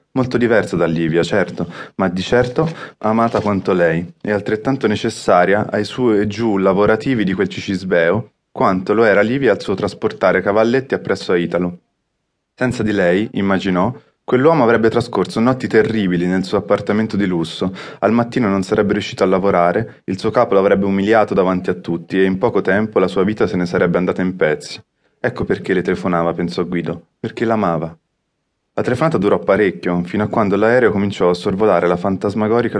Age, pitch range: 20-39, 95-115 Hz